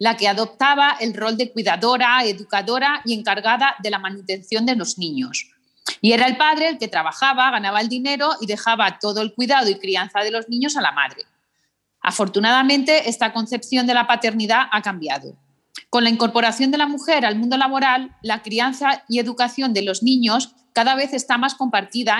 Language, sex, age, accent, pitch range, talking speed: Spanish, female, 30-49, Spanish, 215-270 Hz, 185 wpm